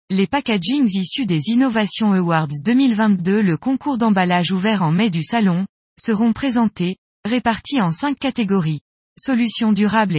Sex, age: female, 20-39